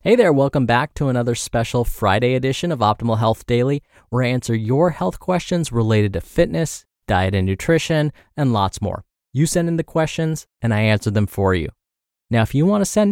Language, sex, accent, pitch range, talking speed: English, male, American, 105-140 Hz, 205 wpm